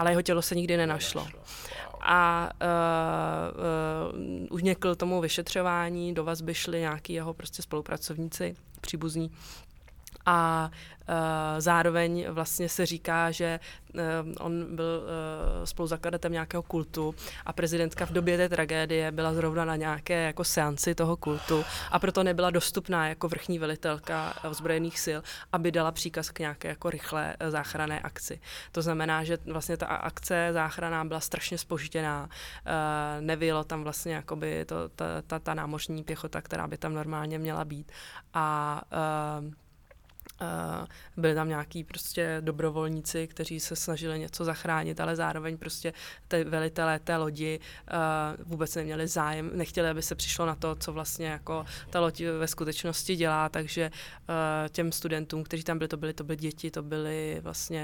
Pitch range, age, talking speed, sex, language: 155-170 Hz, 20-39, 150 wpm, female, Czech